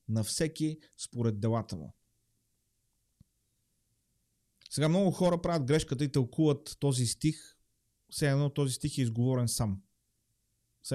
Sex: male